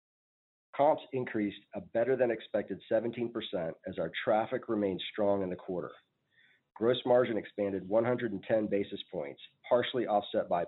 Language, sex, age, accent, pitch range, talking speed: English, male, 40-59, American, 95-115 Hz, 125 wpm